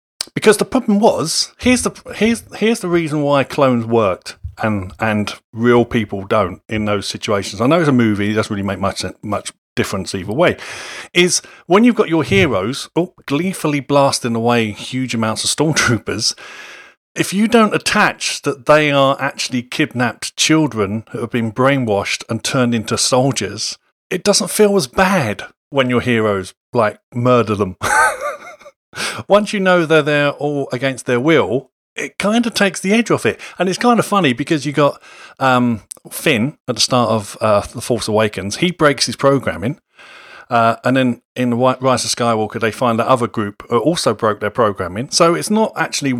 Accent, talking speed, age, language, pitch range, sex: British, 180 wpm, 40-59, English, 115-175 Hz, male